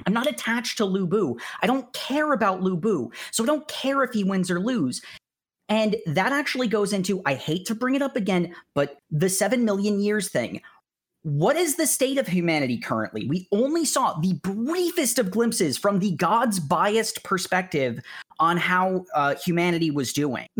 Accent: American